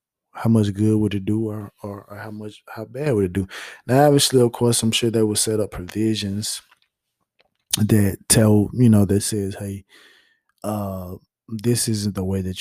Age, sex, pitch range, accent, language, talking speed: 20-39, male, 95-110 Hz, American, English, 190 wpm